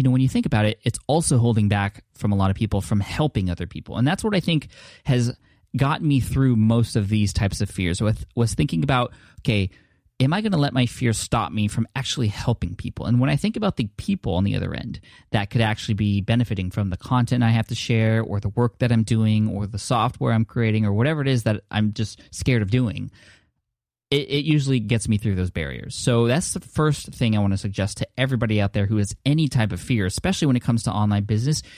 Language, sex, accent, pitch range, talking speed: English, male, American, 105-130 Hz, 245 wpm